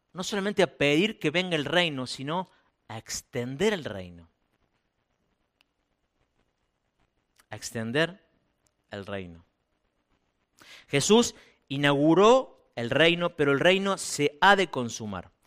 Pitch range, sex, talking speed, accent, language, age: 130-190 Hz, male, 110 wpm, Argentinian, Spanish, 50-69